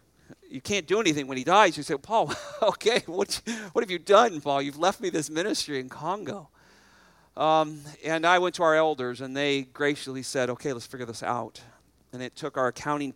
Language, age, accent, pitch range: English, 40-59, American, 125-150 Hz